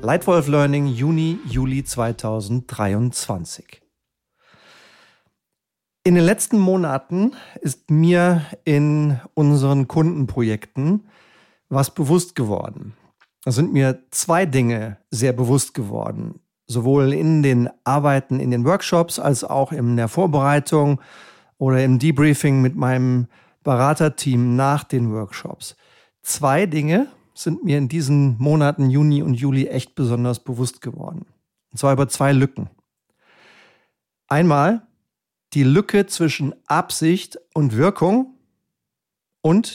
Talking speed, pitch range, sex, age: 110 wpm, 130-160 Hz, male, 40-59